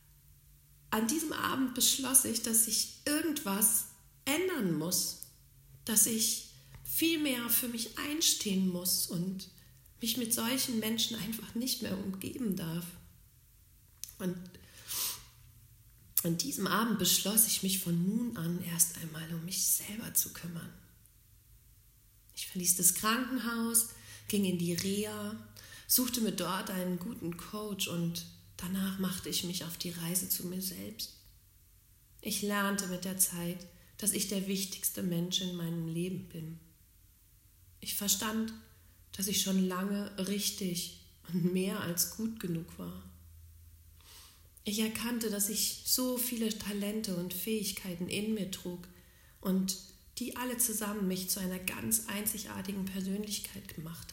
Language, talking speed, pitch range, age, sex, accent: German, 135 wpm, 135-215 Hz, 40-59, female, German